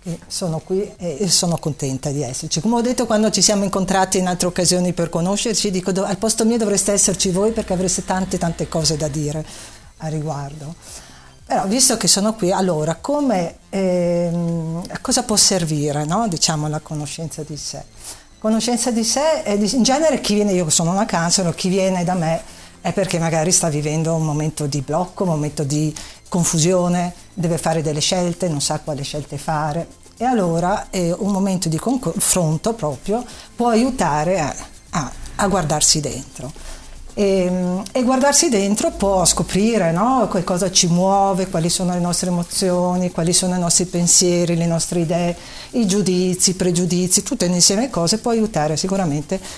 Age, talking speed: 50-69, 160 wpm